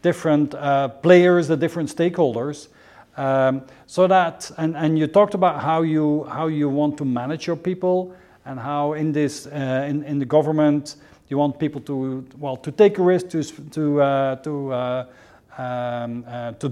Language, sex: English, male